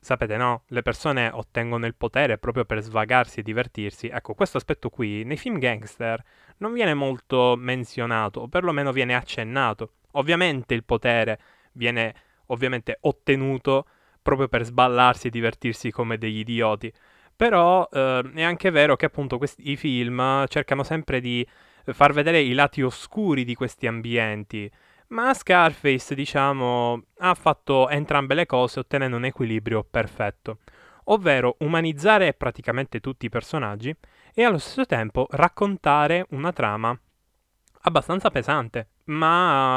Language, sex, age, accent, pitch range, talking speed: Italian, male, 10-29, native, 115-150 Hz, 135 wpm